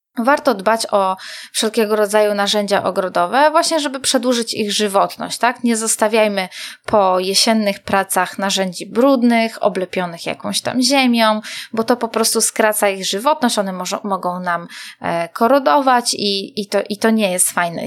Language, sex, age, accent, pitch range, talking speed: Polish, female, 20-39, native, 195-235 Hz, 145 wpm